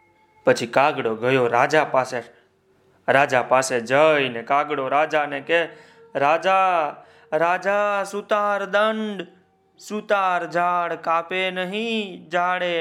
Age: 30-49